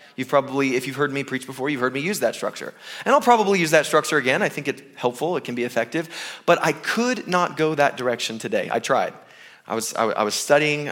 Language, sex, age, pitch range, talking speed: English, male, 20-39, 125-155 Hz, 240 wpm